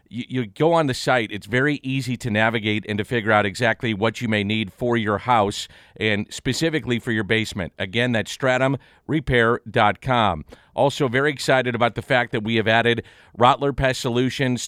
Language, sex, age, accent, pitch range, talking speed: English, male, 50-69, American, 110-130 Hz, 175 wpm